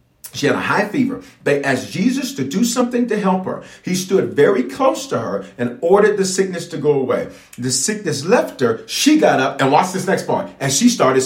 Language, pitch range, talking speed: English, 135-220 Hz, 225 wpm